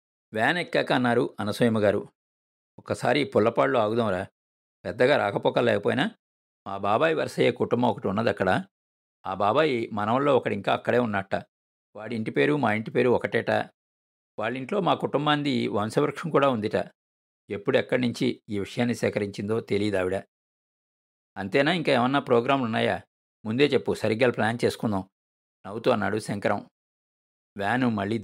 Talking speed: 120 wpm